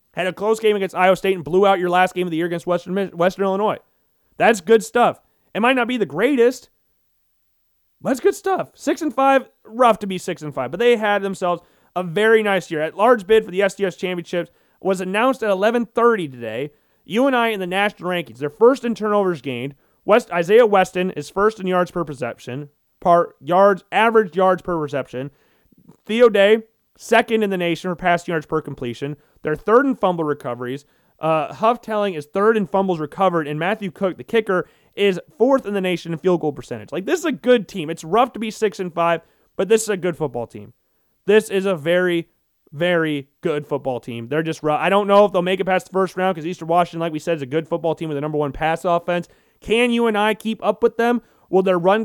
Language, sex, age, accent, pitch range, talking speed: English, male, 30-49, American, 160-215 Hz, 225 wpm